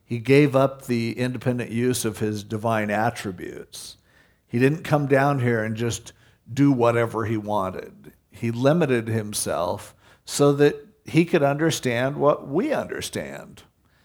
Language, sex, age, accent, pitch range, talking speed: English, male, 50-69, American, 110-130 Hz, 135 wpm